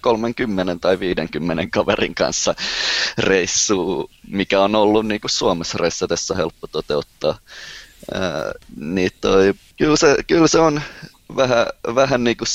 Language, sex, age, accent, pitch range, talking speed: Finnish, male, 20-39, native, 100-125 Hz, 125 wpm